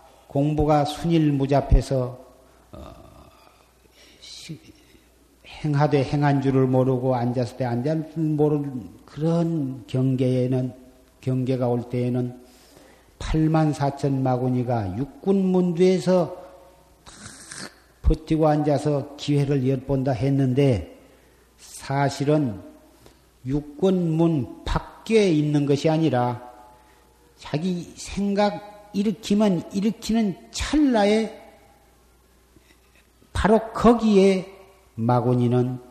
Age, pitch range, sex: 50-69, 125-165 Hz, male